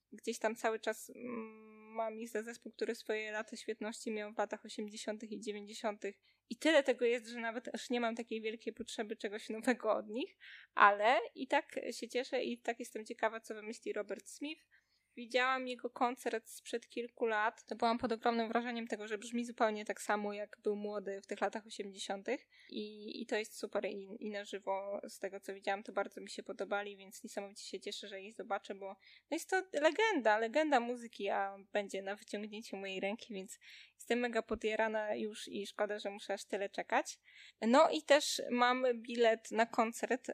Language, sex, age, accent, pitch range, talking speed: Polish, female, 20-39, native, 210-240 Hz, 185 wpm